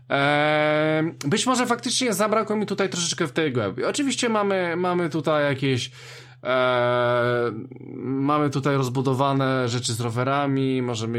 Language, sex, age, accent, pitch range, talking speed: Polish, male, 20-39, native, 125-165 Hz, 120 wpm